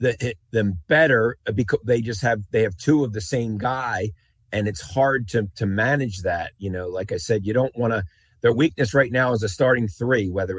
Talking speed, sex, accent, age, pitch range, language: 220 wpm, male, American, 40-59, 110-145 Hz, English